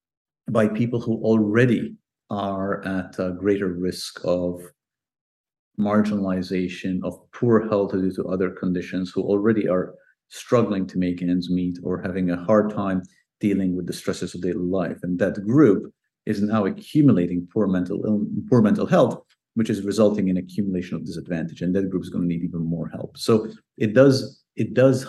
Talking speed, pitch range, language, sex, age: 170 wpm, 90-110 Hz, English, male, 50-69